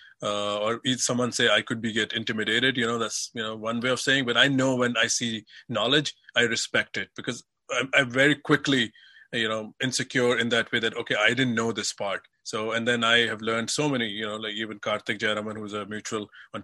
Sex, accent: male, Indian